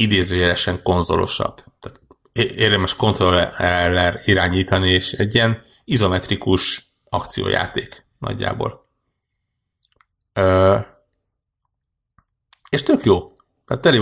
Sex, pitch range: male, 90-100 Hz